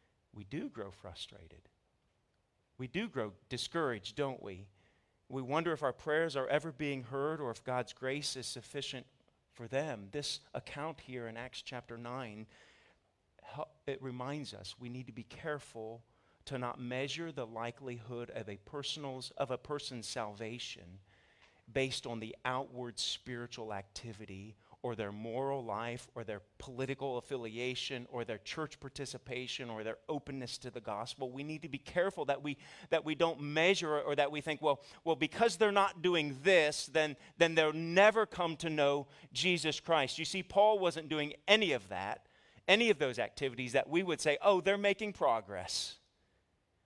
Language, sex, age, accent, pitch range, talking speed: English, male, 40-59, American, 115-150 Hz, 165 wpm